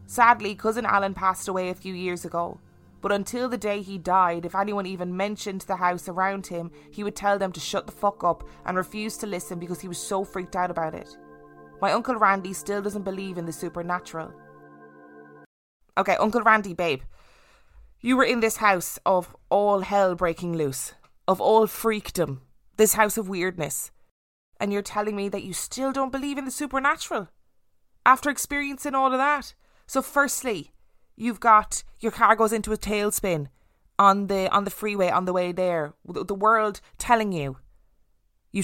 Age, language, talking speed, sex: 20-39, English, 180 wpm, female